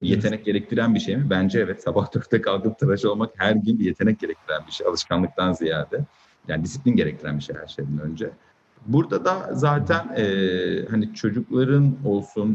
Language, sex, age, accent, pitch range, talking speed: Turkish, male, 50-69, native, 100-135 Hz, 170 wpm